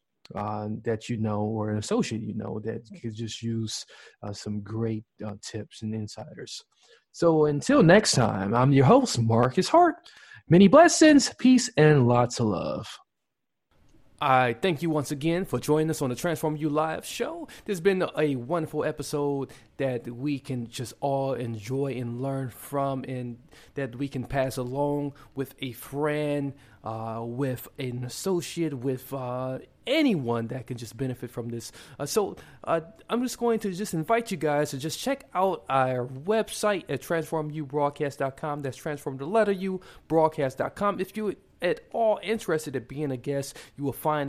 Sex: male